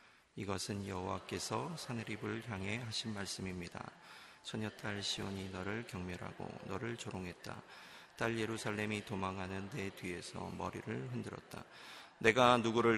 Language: Korean